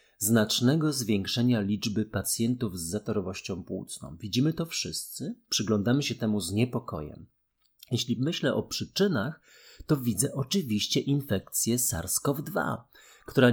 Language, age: Polish, 30-49